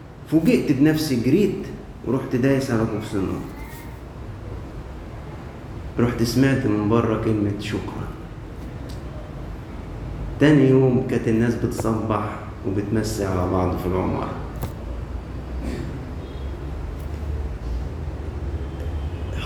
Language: Arabic